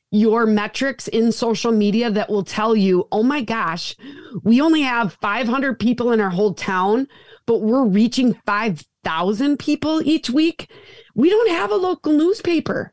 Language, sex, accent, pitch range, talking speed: English, female, American, 205-260 Hz, 160 wpm